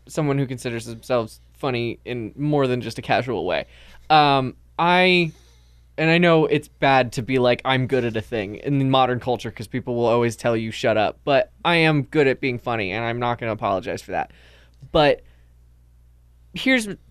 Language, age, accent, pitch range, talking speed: English, 20-39, American, 120-170 Hz, 195 wpm